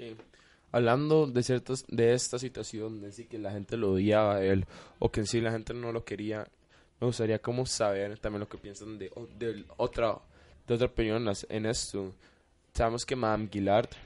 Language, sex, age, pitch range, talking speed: Spanish, male, 20-39, 100-115 Hz, 195 wpm